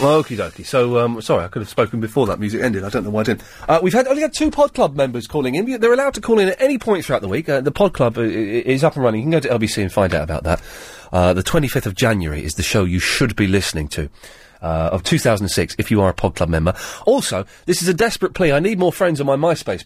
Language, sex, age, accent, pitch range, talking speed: English, male, 30-49, British, 95-140 Hz, 285 wpm